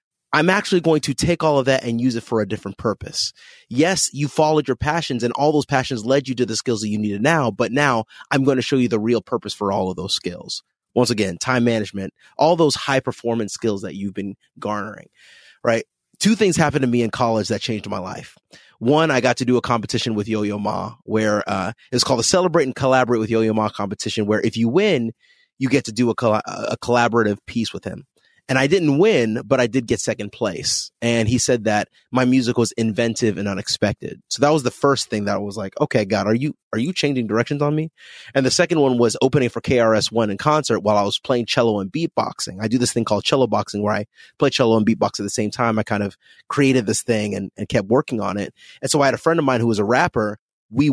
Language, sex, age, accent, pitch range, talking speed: English, male, 30-49, American, 110-135 Hz, 245 wpm